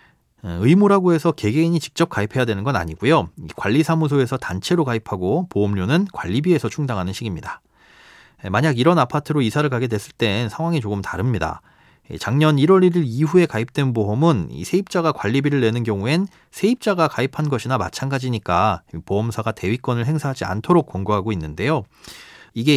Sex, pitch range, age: male, 105-155 Hz, 30-49